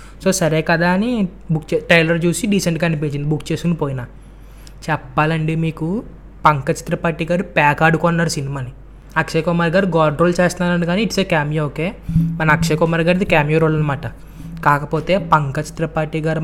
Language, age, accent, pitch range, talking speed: Telugu, 20-39, native, 155-175 Hz, 160 wpm